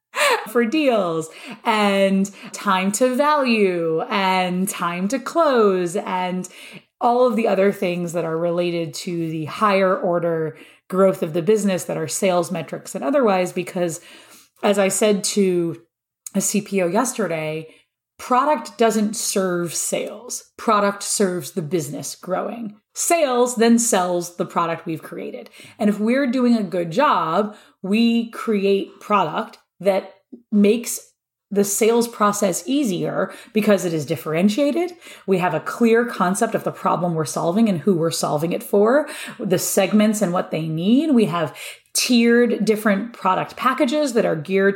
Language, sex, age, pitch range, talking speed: English, female, 30-49, 180-235 Hz, 145 wpm